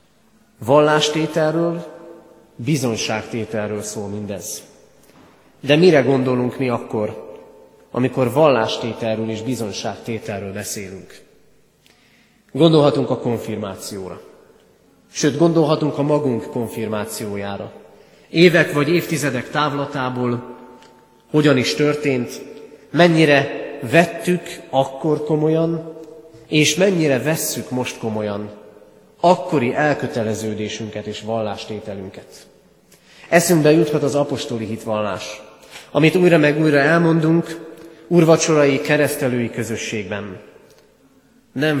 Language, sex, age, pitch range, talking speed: Hungarian, male, 30-49, 110-155 Hz, 80 wpm